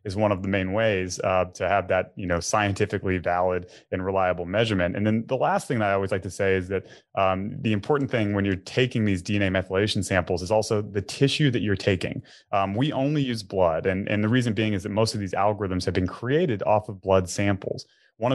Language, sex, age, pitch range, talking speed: English, male, 20-39, 95-110 Hz, 235 wpm